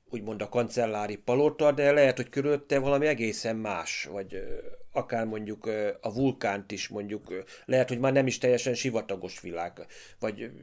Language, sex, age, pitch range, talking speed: Hungarian, male, 30-49, 105-130 Hz, 150 wpm